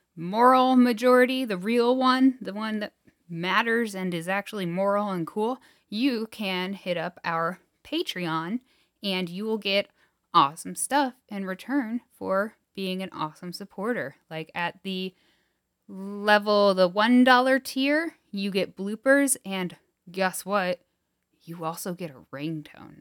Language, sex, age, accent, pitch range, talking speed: English, female, 10-29, American, 165-225 Hz, 135 wpm